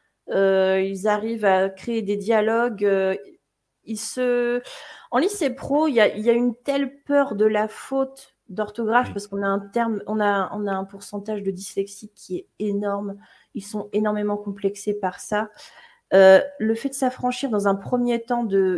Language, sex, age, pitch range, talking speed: French, female, 30-49, 200-240 Hz, 180 wpm